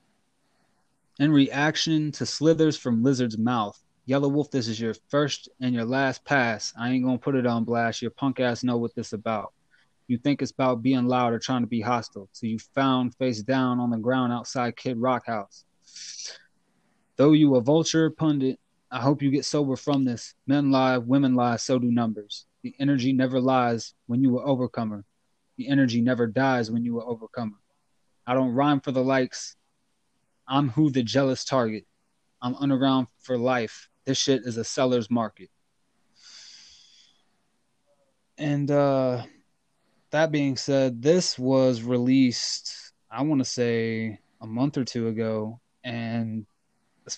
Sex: male